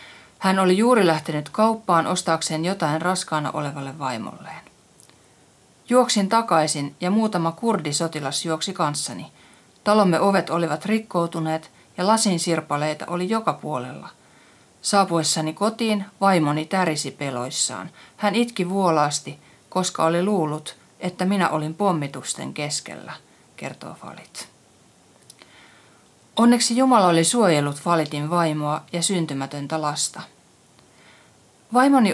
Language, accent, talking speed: Finnish, native, 100 wpm